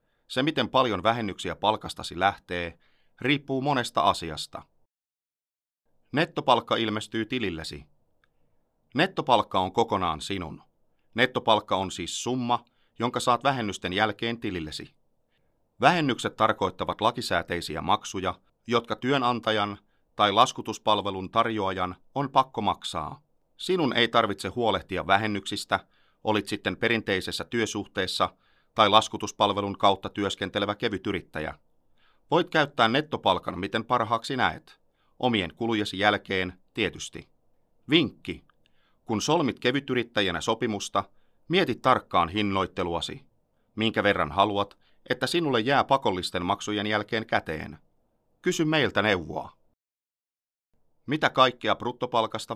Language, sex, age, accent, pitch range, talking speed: Finnish, male, 30-49, native, 95-120 Hz, 95 wpm